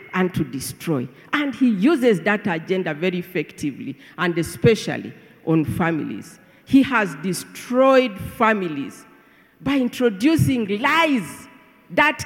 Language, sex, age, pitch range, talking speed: English, female, 50-69, 185-265 Hz, 110 wpm